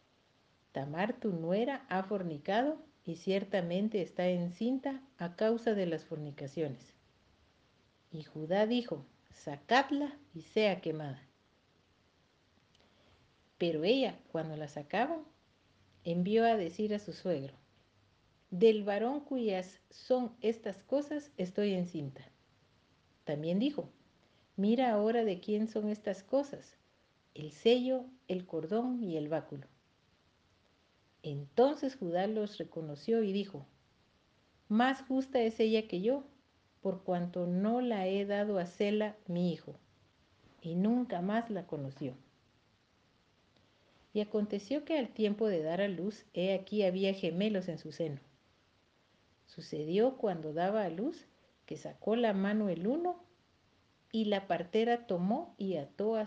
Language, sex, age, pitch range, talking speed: Spanish, female, 50-69, 160-225 Hz, 125 wpm